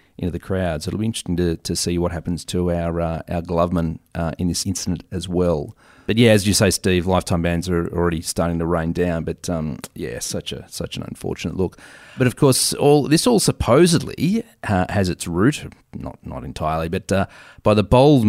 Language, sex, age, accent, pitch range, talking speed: English, male, 30-49, Australian, 85-110 Hz, 215 wpm